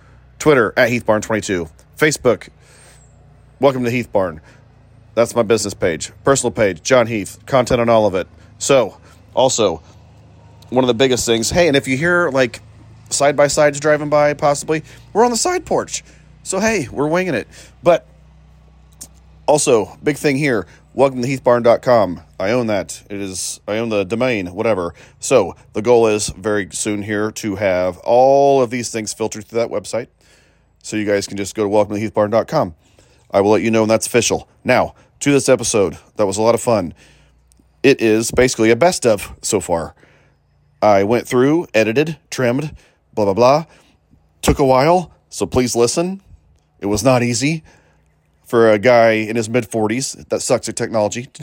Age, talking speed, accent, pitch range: 30-49, 170 wpm, American, 105-135 Hz